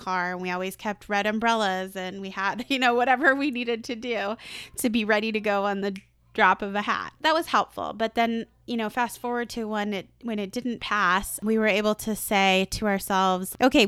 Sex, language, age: female, English, 20-39